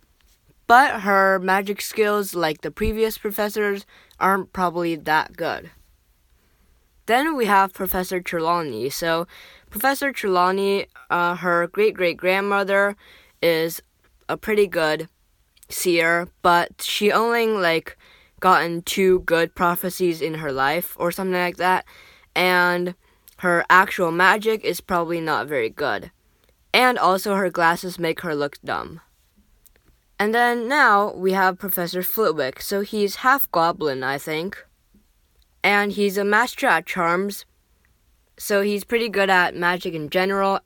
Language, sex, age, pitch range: Chinese, female, 10-29, 170-205 Hz